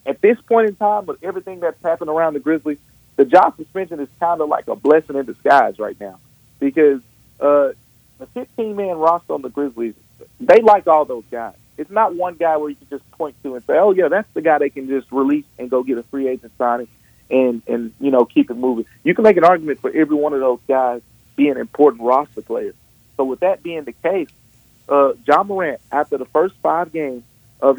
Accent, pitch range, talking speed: American, 130-165 Hz, 220 wpm